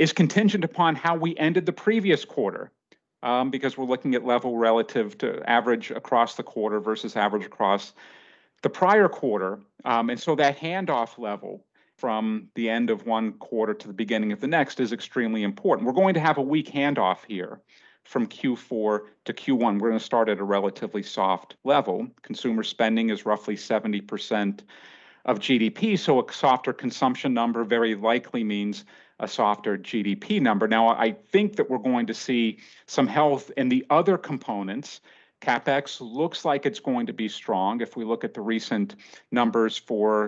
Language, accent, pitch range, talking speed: English, American, 110-140 Hz, 175 wpm